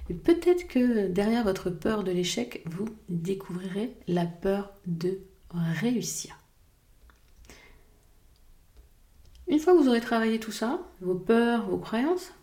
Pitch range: 170-210 Hz